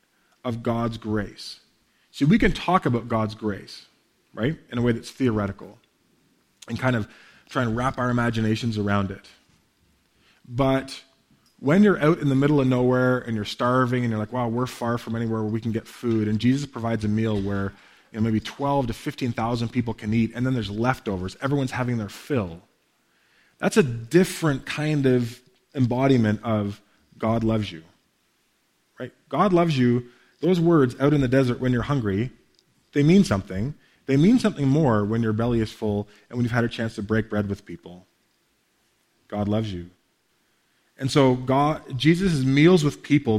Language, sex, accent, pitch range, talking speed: English, male, American, 110-135 Hz, 175 wpm